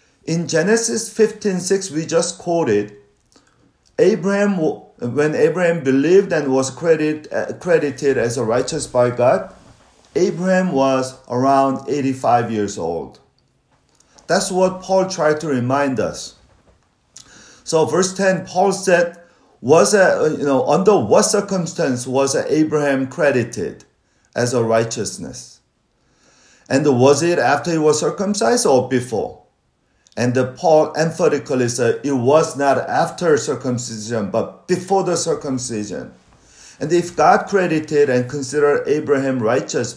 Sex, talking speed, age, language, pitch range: male, 120 wpm, 40-59, English, 130-175 Hz